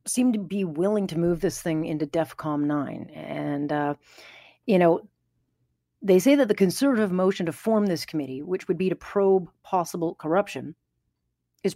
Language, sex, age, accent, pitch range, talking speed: English, female, 40-59, American, 150-205 Hz, 170 wpm